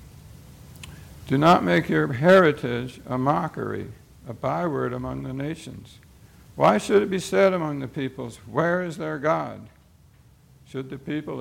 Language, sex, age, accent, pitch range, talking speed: English, male, 60-79, American, 115-145 Hz, 140 wpm